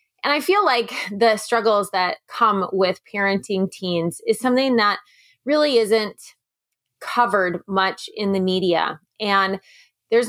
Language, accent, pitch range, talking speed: English, American, 185-235 Hz, 135 wpm